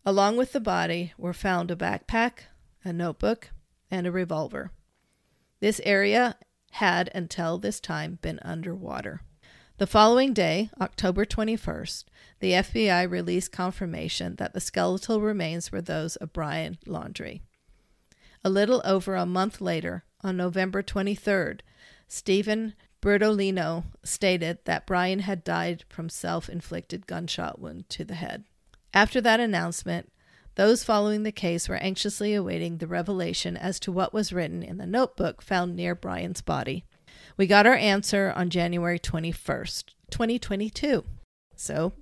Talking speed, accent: 135 wpm, American